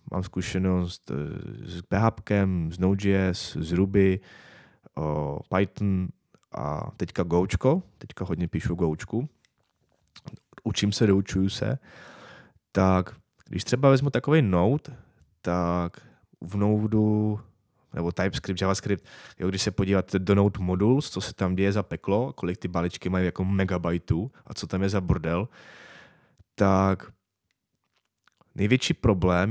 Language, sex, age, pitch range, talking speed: Czech, male, 20-39, 90-105 Hz, 125 wpm